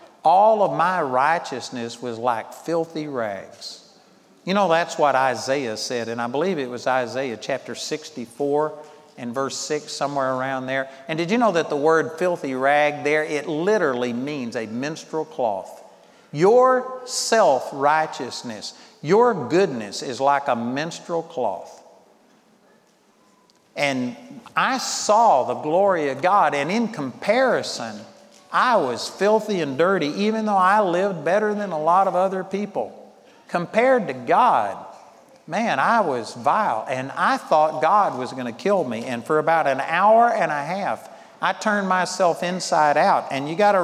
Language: English